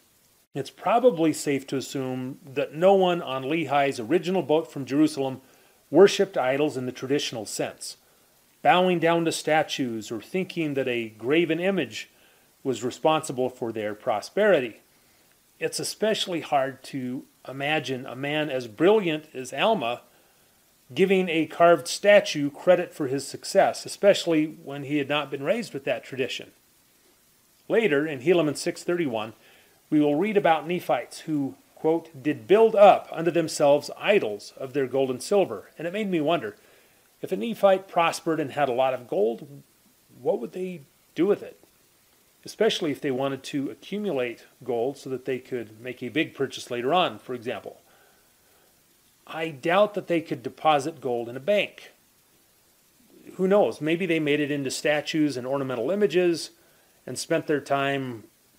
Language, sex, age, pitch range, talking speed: English, male, 40-59, 135-175 Hz, 155 wpm